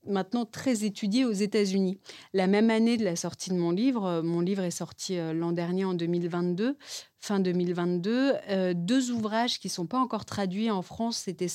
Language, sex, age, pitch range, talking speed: French, female, 30-49, 175-215 Hz, 190 wpm